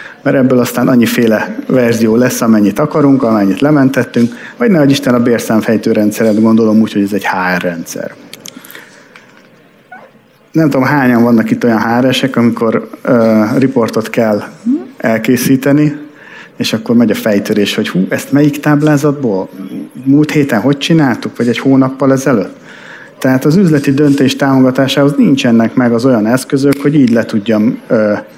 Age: 50-69